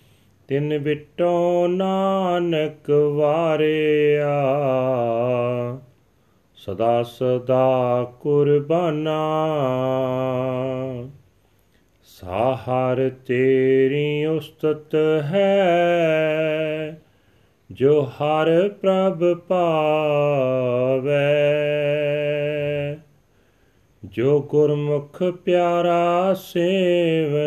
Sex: male